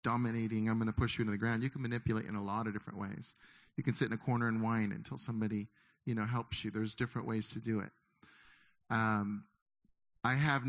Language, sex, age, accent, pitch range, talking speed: English, male, 40-59, American, 115-135 Hz, 230 wpm